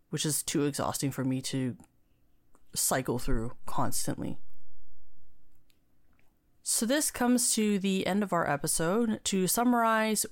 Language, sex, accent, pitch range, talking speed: English, female, American, 150-190 Hz, 120 wpm